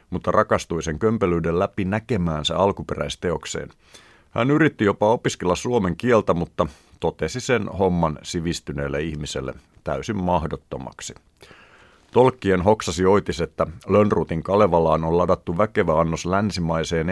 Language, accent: Finnish, native